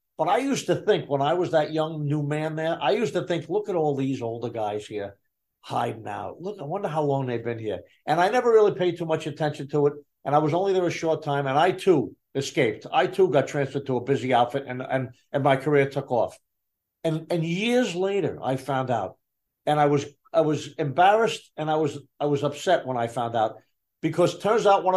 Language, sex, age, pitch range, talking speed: English, male, 50-69, 130-165 Hz, 235 wpm